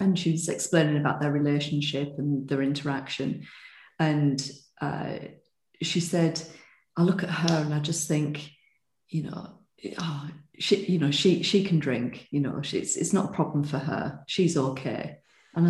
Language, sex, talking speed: English, female, 170 wpm